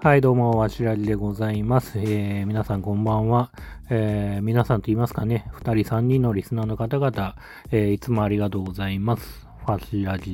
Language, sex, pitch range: Japanese, male, 95-120 Hz